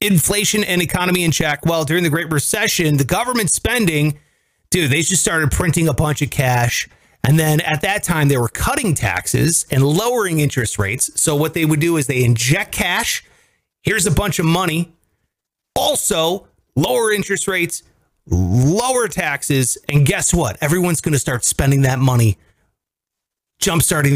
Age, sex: 30-49, male